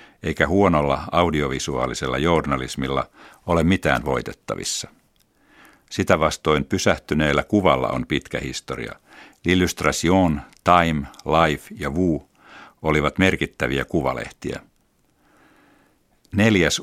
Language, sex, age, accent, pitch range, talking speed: Finnish, male, 60-79, native, 70-90 Hz, 80 wpm